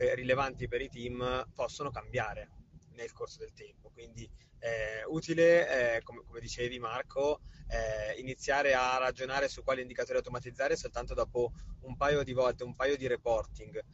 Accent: native